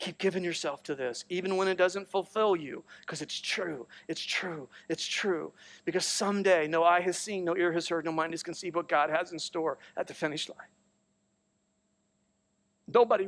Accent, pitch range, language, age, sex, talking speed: American, 155-195 Hz, English, 40-59, male, 190 wpm